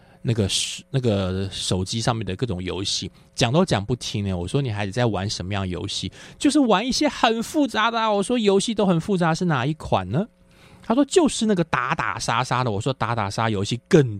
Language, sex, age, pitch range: Chinese, male, 20-39, 95-125 Hz